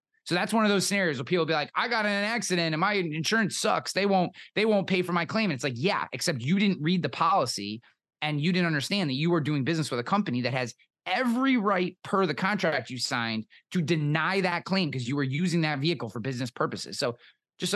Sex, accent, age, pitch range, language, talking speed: male, American, 30-49, 130-180 Hz, English, 245 wpm